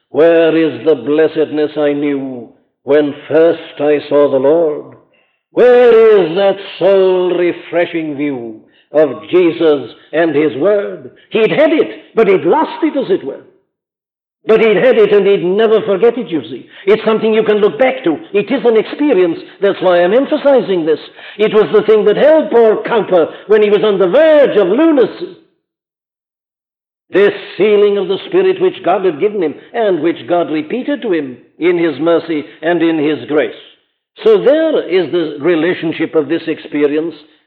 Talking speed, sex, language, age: 170 wpm, male, English, 60-79